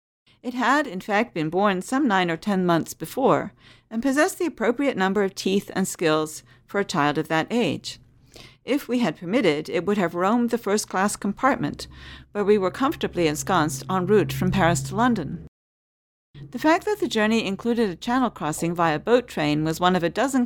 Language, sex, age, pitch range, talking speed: English, female, 50-69, 160-230 Hz, 195 wpm